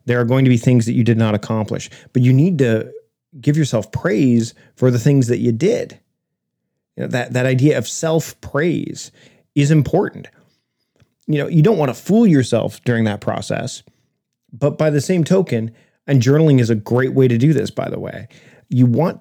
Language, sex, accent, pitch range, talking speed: English, male, American, 115-145 Hz, 200 wpm